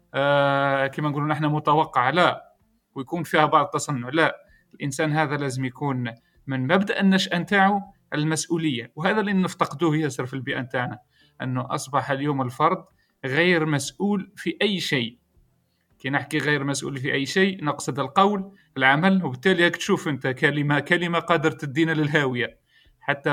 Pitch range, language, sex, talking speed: 140-185 Hz, Arabic, male, 145 wpm